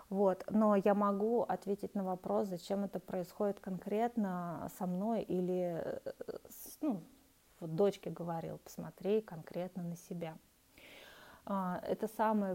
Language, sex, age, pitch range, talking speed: Russian, female, 20-39, 175-210 Hz, 115 wpm